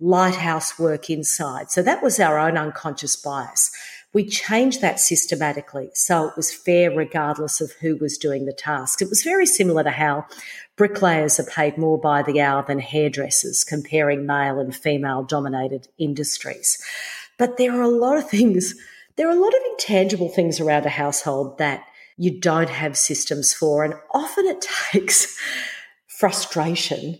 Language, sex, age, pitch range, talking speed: English, female, 50-69, 150-195 Hz, 165 wpm